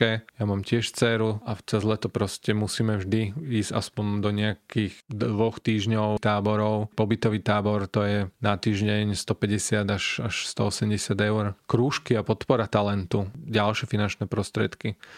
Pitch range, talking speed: 105-120 Hz, 135 wpm